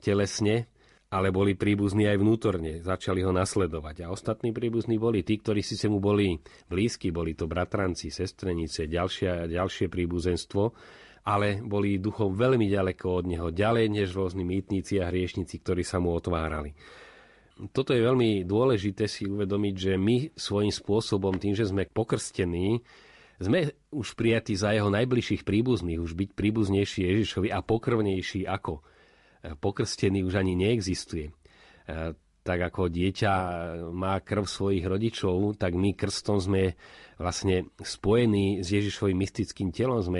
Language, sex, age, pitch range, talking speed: Slovak, male, 30-49, 90-105 Hz, 140 wpm